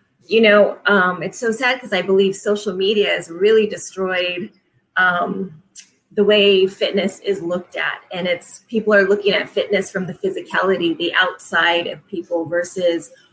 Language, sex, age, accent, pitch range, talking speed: English, female, 30-49, American, 180-210 Hz, 160 wpm